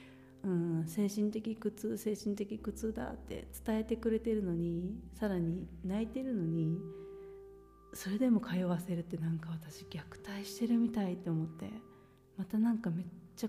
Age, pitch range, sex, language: 40-59, 165-220 Hz, female, Japanese